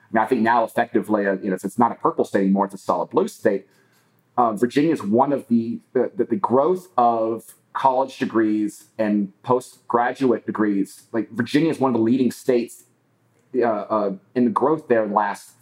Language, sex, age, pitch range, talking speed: English, male, 30-49, 110-125 Hz, 205 wpm